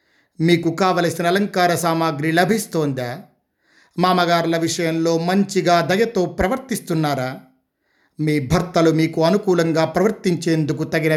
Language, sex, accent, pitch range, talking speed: Telugu, male, native, 160-195 Hz, 85 wpm